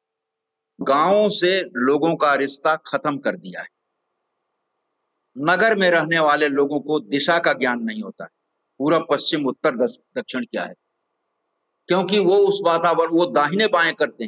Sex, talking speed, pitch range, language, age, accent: male, 145 wpm, 150-200 Hz, Hindi, 60-79, native